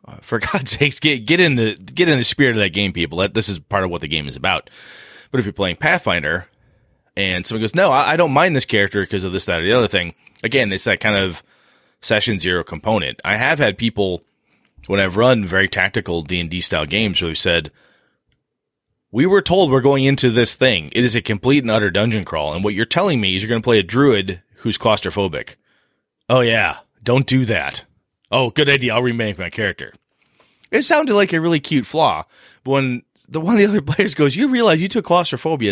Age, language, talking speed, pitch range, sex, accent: 30-49, English, 220 wpm, 100-140 Hz, male, American